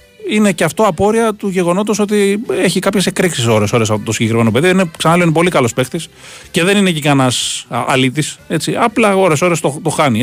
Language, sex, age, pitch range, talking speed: Greek, male, 30-49, 105-165 Hz, 205 wpm